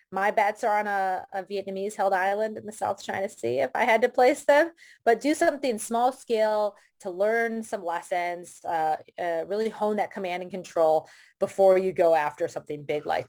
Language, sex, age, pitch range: English, female, 20-39, 180-220 Hz